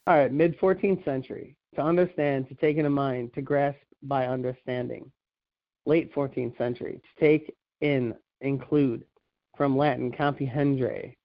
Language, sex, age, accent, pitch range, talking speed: English, male, 40-59, American, 135-155 Hz, 135 wpm